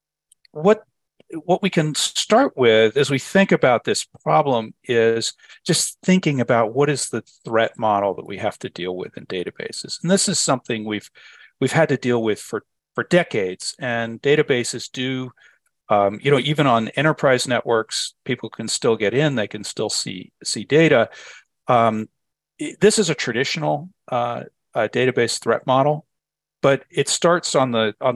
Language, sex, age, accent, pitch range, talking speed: English, male, 50-69, American, 115-155 Hz, 170 wpm